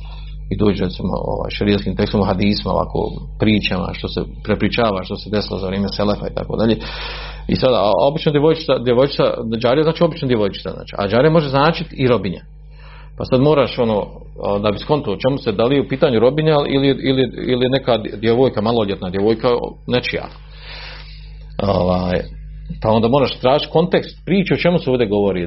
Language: Croatian